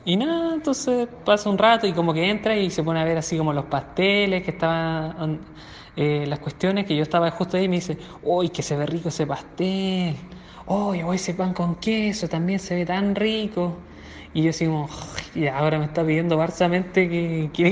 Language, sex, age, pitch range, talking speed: Spanish, male, 20-39, 160-205 Hz, 215 wpm